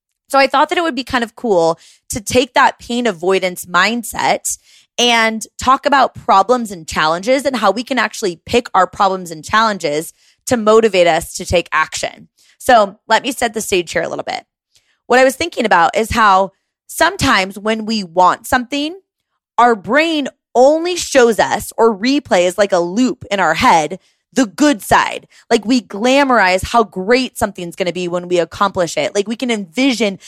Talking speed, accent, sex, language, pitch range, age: 185 wpm, American, female, English, 205-275 Hz, 20-39